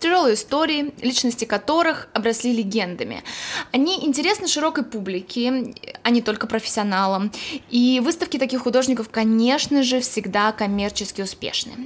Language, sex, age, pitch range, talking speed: Russian, female, 20-39, 225-285 Hz, 115 wpm